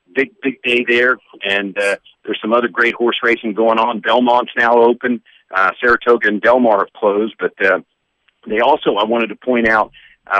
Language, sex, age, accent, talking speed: English, male, 50-69, American, 190 wpm